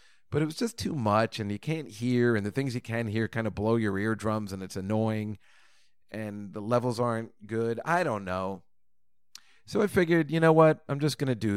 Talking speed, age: 225 wpm, 40-59